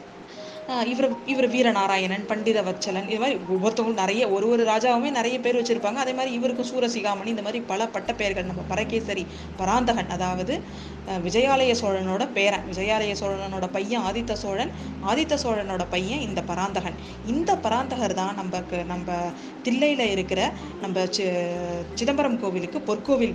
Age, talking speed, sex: 20-39, 130 wpm, female